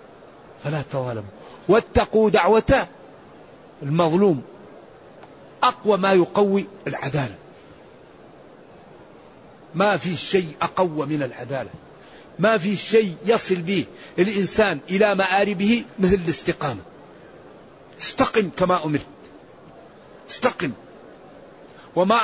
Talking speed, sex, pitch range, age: 80 wpm, male, 155-200 Hz, 50-69